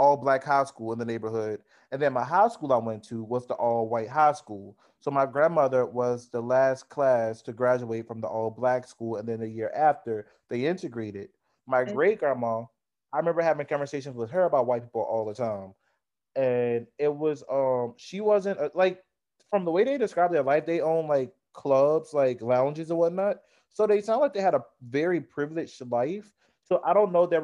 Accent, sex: American, male